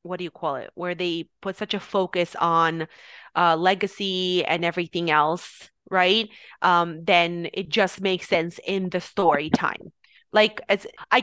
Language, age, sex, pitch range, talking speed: English, 20-39, female, 165-195 Hz, 160 wpm